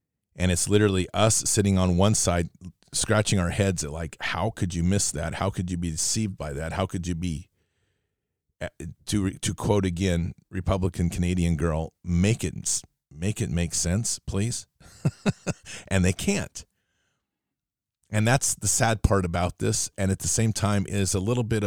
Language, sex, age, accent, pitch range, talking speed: English, male, 40-59, American, 85-105 Hz, 170 wpm